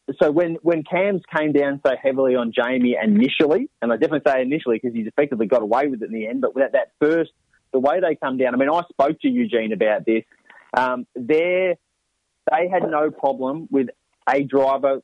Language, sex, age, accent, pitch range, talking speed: English, male, 30-49, Australian, 125-150 Hz, 205 wpm